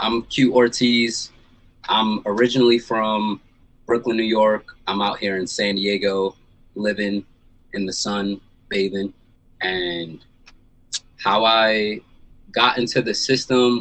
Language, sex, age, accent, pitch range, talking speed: English, male, 20-39, American, 100-120 Hz, 115 wpm